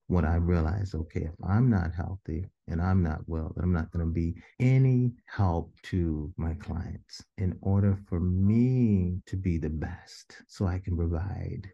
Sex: male